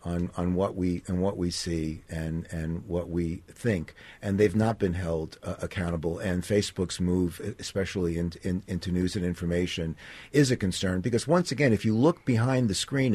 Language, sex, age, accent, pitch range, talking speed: English, male, 50-69, American, 85-105 Hz, 185 wpm